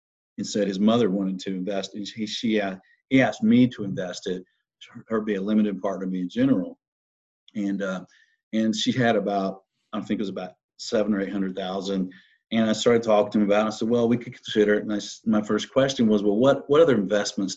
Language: English